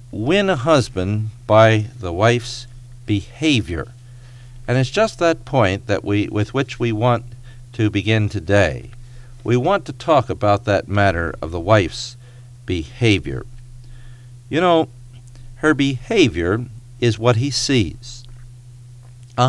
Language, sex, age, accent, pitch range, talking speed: English, male, 50-69, American, 100-125 Hz, 125 wpm